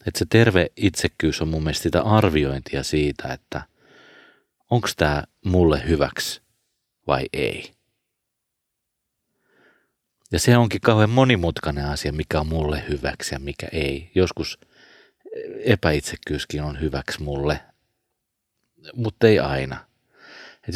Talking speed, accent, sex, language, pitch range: 115 wpm, native, male, Finnish, 75-100 Hz